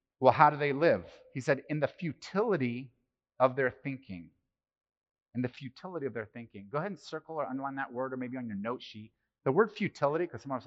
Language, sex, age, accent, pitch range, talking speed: English, male, 30-49, American, 120-175 Hz, 215 wpm